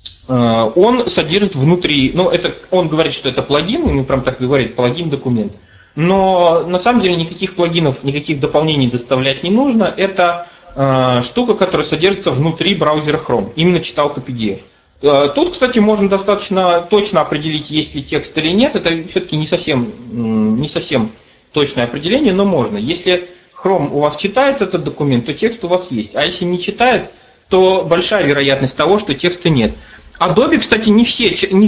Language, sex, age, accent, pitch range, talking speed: Russian, male, 30-49, native, 135-190 Hz, 165 wpm